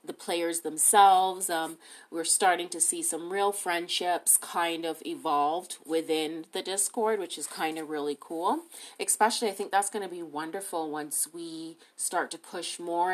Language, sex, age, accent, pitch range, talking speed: English, female, 30-49, American, 170-250 Hz, 170 wpm